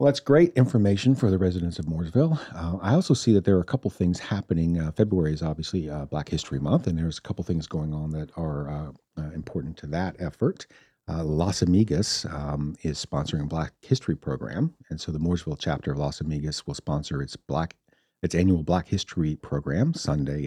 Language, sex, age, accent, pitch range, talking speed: English, male, 50-69, American, 75-95 Hz, 210 wpm